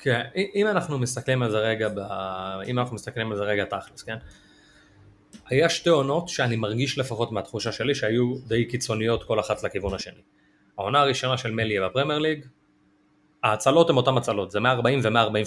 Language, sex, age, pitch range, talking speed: Hebrew, male, 30-49, 105-135 Hz, 165 wpm